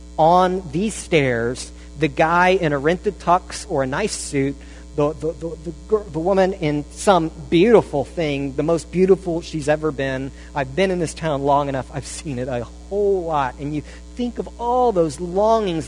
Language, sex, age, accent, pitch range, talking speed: English, male, 50-69, American, 145-210 Hz, 180 wpm